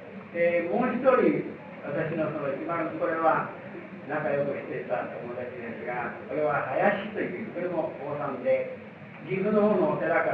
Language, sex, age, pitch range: Japanese, male, 40-59, 155-210 Hz